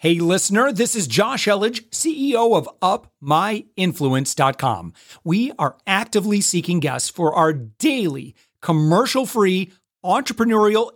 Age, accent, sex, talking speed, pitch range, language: 40-59, American, male, 105 wpm, 165-225 Hz, English